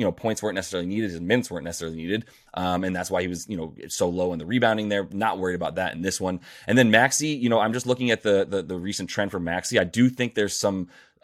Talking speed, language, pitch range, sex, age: 285 wpm, English, 90-115 Hz, male, 30-49